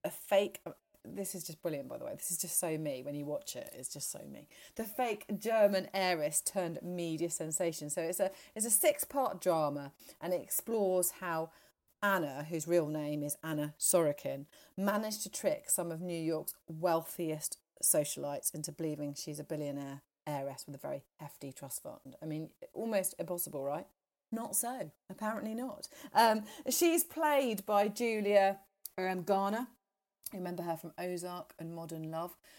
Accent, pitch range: British, 160-205 Hz